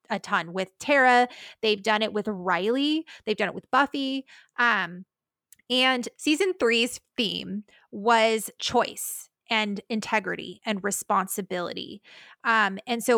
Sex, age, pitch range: female, 20-39, 195-235 Hz